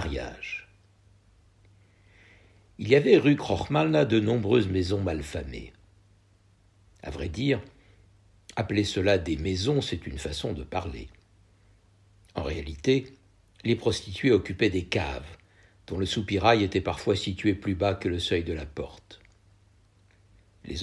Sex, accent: male, French